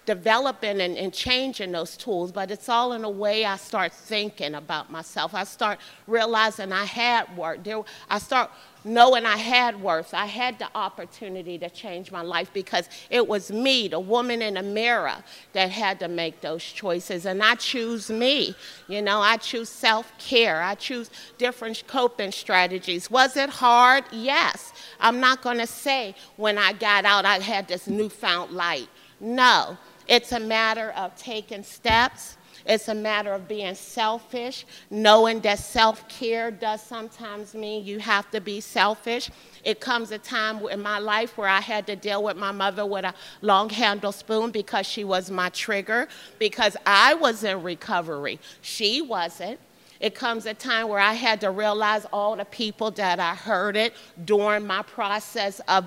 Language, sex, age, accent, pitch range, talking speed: English, female, 40-59, American, 190-225 Hz, 170 wpm